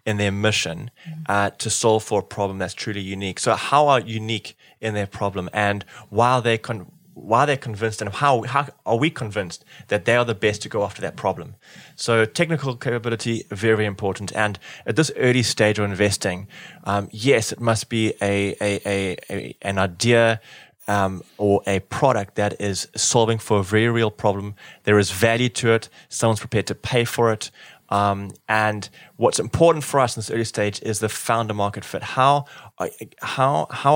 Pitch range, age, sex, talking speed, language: 105-120 Hz, 20-39, male, 190 wpm, English